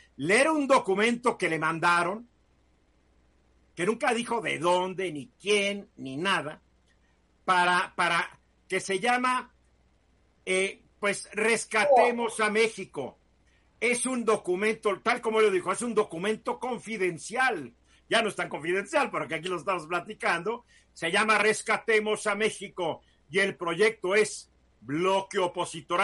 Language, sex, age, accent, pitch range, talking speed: Spanish, male, 50-69, Mexican, 155-220 Hz, 130 wpm